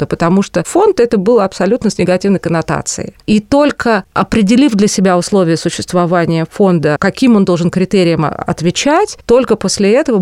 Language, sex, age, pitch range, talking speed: Russian, female, 30-49, 165-205 Hz, 145 wpm